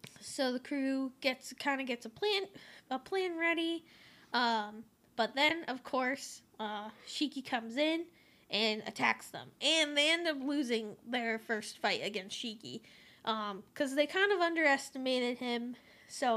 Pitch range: 220-270 Hz